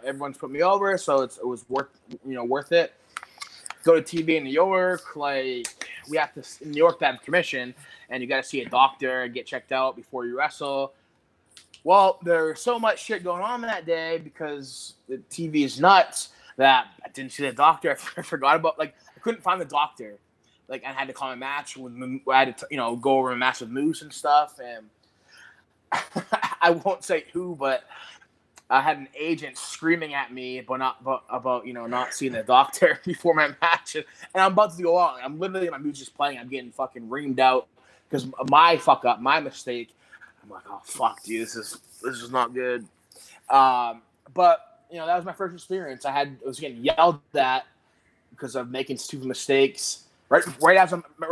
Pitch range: 130-175 Hz